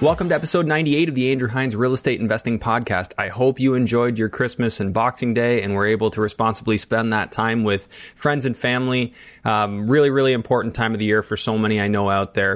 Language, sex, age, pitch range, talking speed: English, male, 20-39, 105-130 Hz, 230 wpm